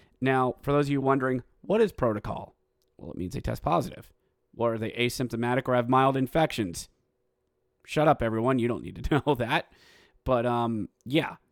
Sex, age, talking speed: male, 30-49, 180 wpm